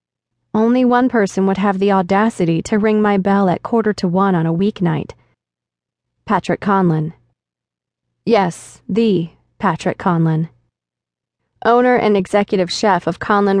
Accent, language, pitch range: American, English, 175-225 Hz